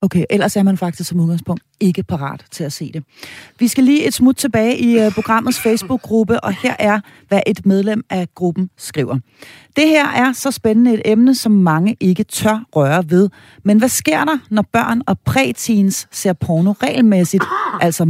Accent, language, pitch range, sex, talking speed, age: native, Danish, 175-235 Hz, female, 185 wpm, 40-59